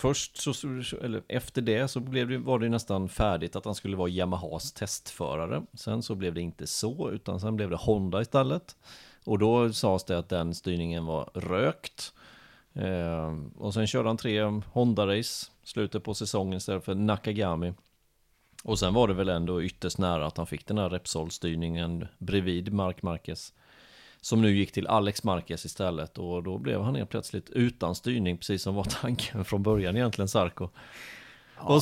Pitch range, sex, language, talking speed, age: 90-110 Hz, male, Swedish, 175 wpm, 30-49